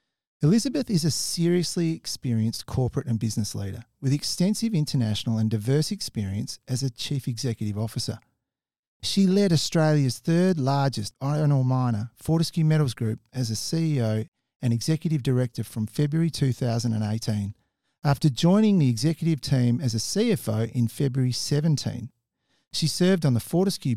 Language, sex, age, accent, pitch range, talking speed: English, male, 40-59, Australian, 115-155 Hz, 140 wpm